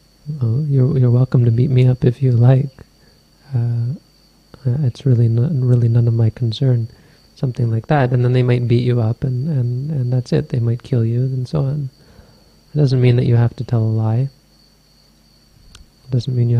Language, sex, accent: English, male, American